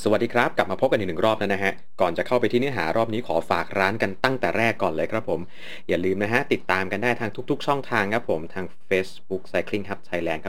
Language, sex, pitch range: Thai, male, 90-115 Hz